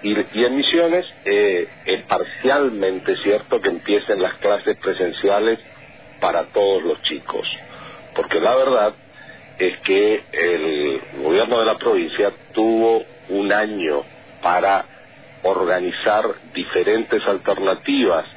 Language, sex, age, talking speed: Spanish, male, 50-69, 115 wpm